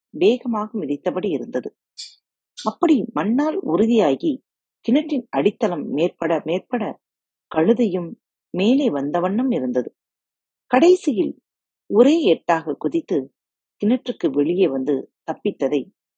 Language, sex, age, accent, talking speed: Tamil, female, 40-59, native, 80 wpm